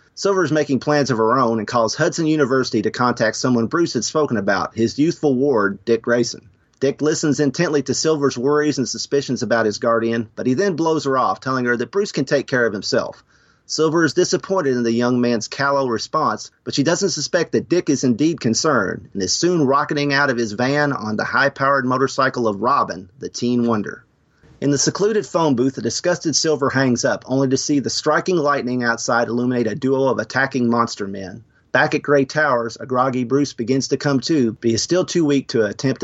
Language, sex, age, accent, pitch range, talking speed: English, male, 40-59, American, 120-150 Hz, 210 wpm